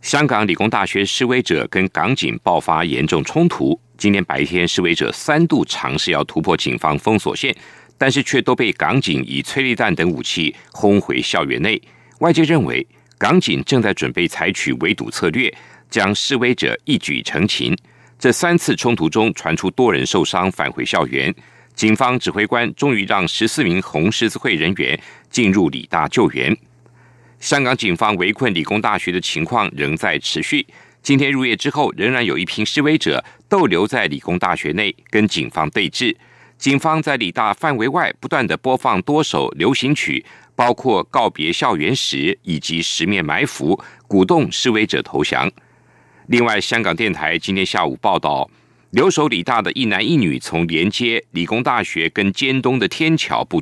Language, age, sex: Chinese, 50-69, male